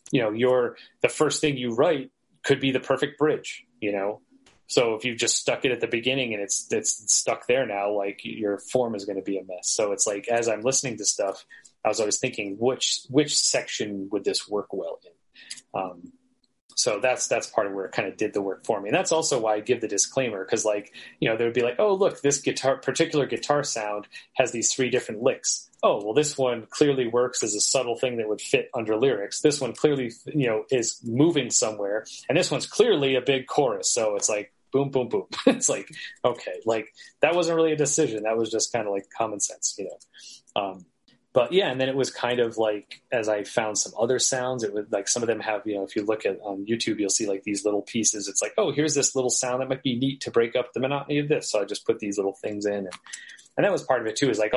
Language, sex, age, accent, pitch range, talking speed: English, male, 30-49, American, 105-145 Hz, 250 wpm